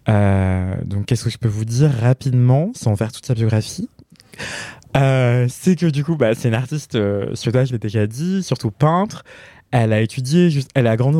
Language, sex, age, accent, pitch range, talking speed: French, male, 20-39, French, 100-130 Hz, 205 wpm